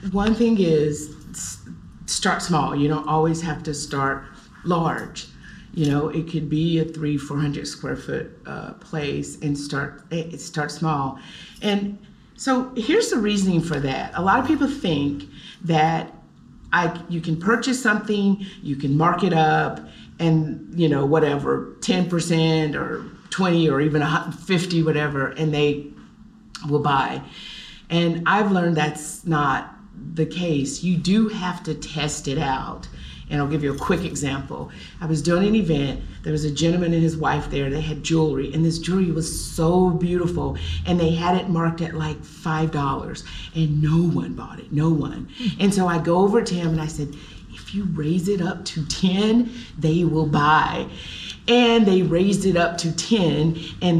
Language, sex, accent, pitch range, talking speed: English, female, American, 150-185 Hz, 175 wpm